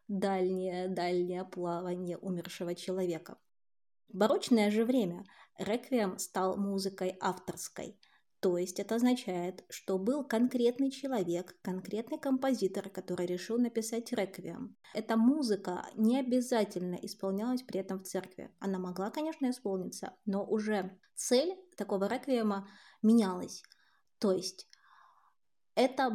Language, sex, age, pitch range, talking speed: Russian, female, 20-39, 185-225 Hz, 110 wpm